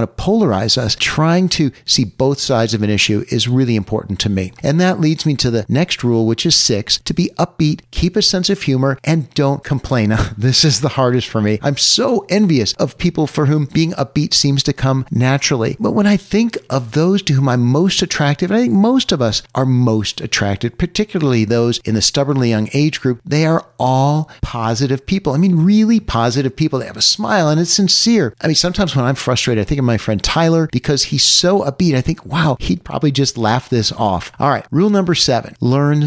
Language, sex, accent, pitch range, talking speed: English, male, American, 115-165 Hz, 220 wpm